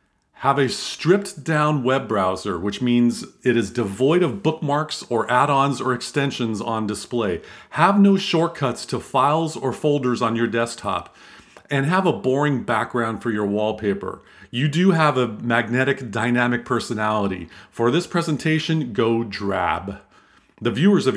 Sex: male